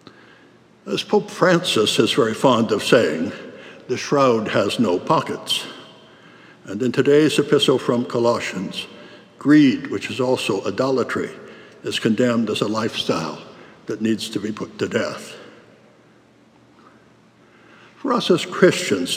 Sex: male